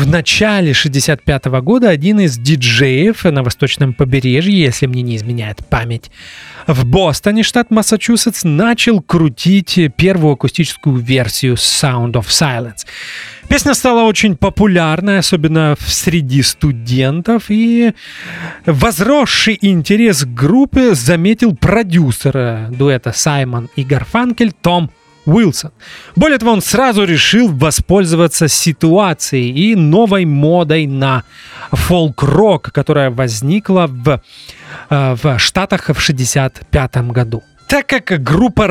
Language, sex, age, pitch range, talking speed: English, male, 30-49, 140-200 Hz, 110 wpm